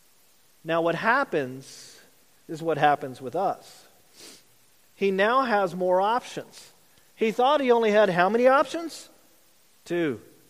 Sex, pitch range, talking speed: male, 185-245 Hz, 125 wpm